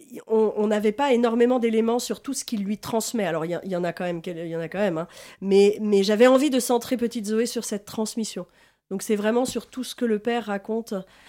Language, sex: French, female